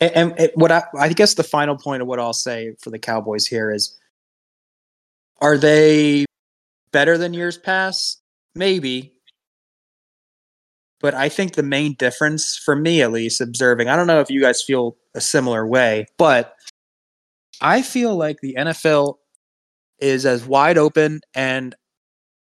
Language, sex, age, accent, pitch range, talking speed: English, male, 20-39, American, 125-165 Hz, 150 wpm